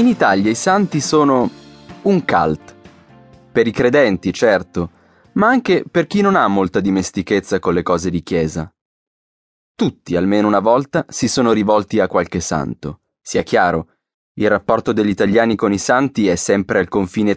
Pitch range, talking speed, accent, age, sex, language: 85-130 Hz, 160 wpm, Italian, 20-39, male, German